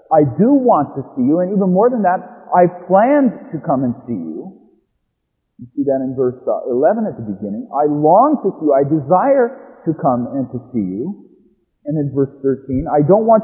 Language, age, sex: English, 50-69, male